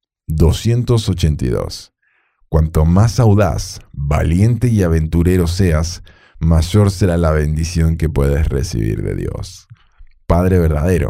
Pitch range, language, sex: 80-105 Hz, Spanish, male